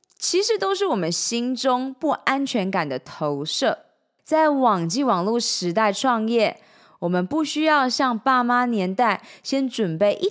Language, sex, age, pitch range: Chinese, female, 20-39, 190-265 Hz